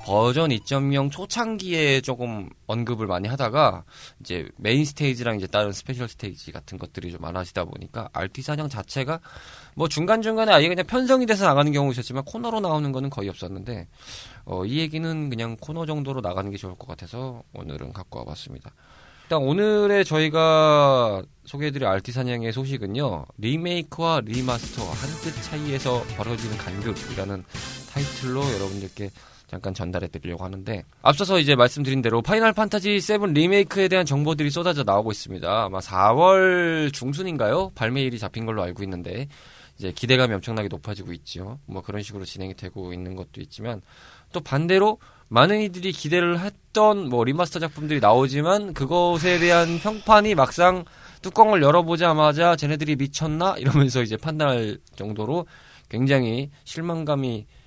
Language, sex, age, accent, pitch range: Korean, male, 20-39, native, 110-165 Hz